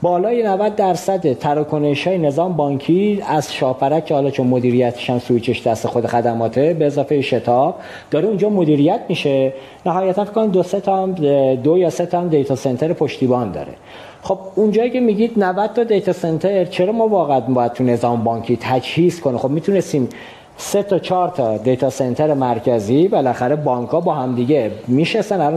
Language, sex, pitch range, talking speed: Persian, male, 130-170 Hz, 165 wpm